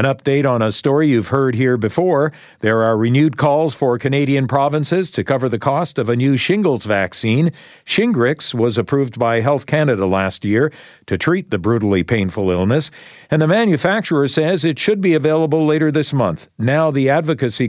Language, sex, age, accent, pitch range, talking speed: English, male, 50-69, American, 110-155 Hz, 180 wpm